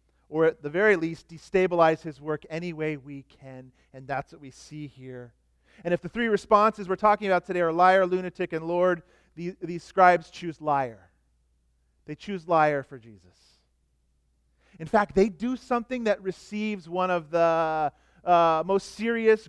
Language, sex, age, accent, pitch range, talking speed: English, male, 40-59, American, 130-185 Hz, 165 wpm